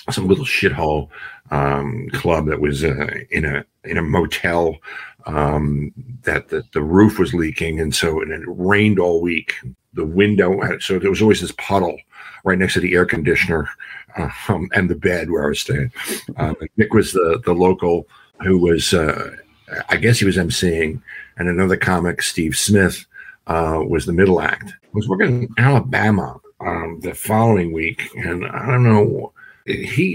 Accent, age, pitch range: American, 50-69, 80-105 Hz